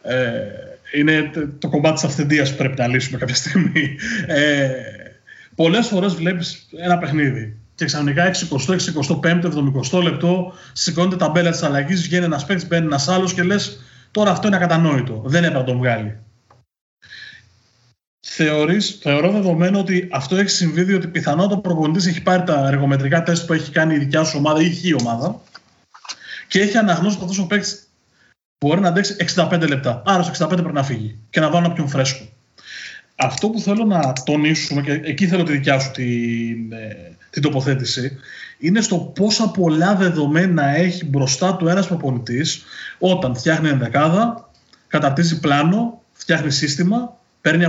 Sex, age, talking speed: male, 30-49, 160 wpm